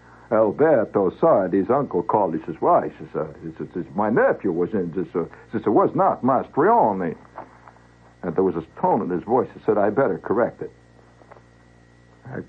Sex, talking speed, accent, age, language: male, 165 wpm, American, 60-79, English